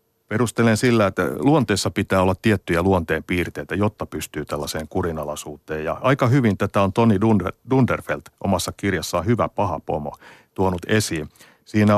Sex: male